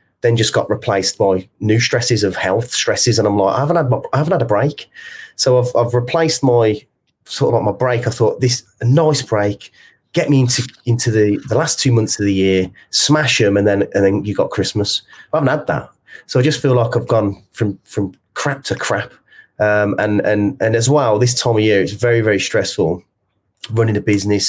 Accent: British